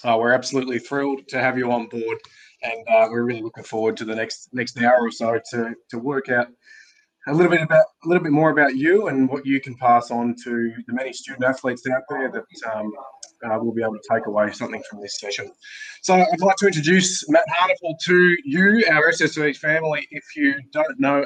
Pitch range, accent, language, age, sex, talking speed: 120-165 Hz, Australian, English, 20-39, male, 220 wpm